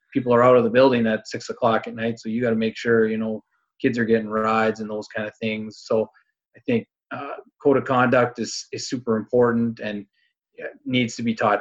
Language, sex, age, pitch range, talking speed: English, male, 30-49, 110-125 Hz, 225 wpm